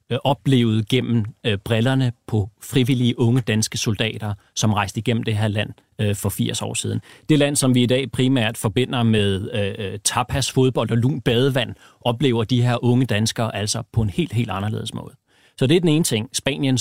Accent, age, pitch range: native, 30-49, 110-130 Hz